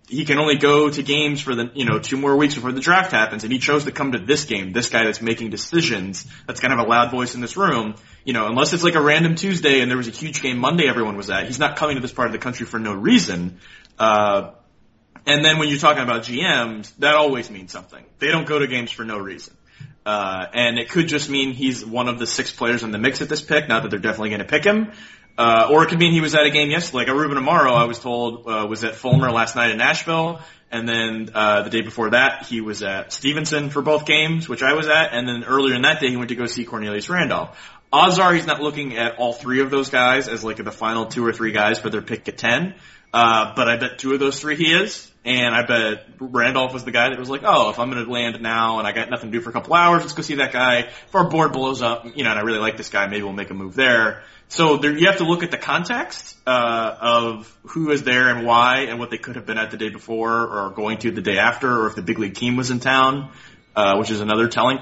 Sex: male